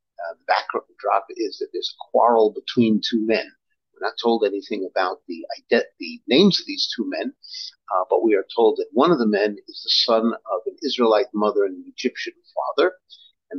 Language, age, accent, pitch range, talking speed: English, 50-69, American, 285-445 Hz, 200 wpm